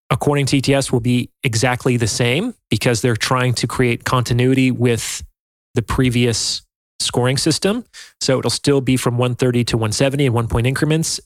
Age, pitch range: 30-49, 120-145 Hz